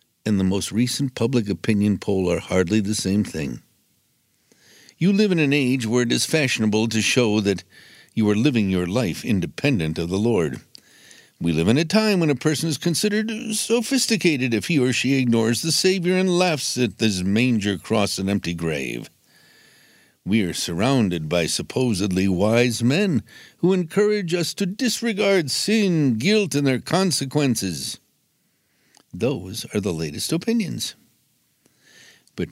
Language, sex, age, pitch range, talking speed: English, male, 60-79, 105-170 Hz, 155 wpm